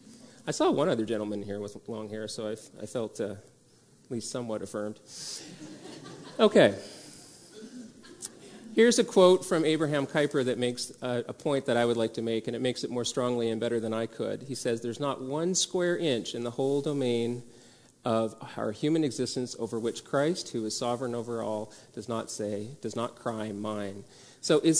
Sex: male